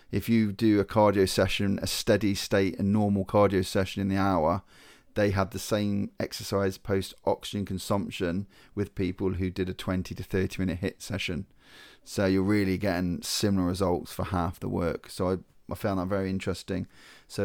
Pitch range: 95-110 Hz